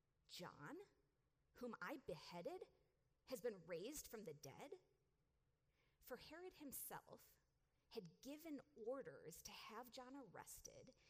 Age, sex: 40-59, female